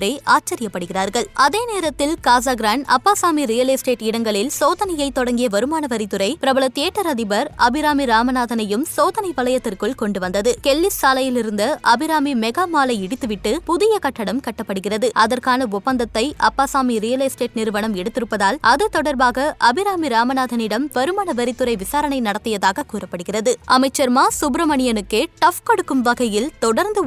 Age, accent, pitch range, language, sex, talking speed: 20-39, native, 225-295 Hz, Tamil, female, 110 wpm